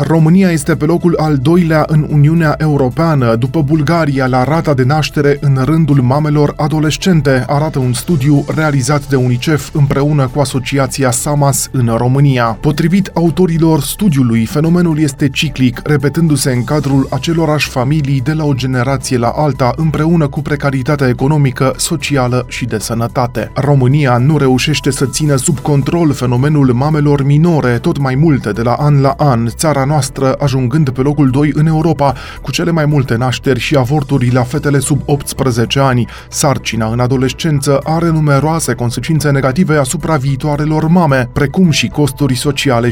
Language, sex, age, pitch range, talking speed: Romanian, male, 20-39, 130-155 Hz, 150 wpm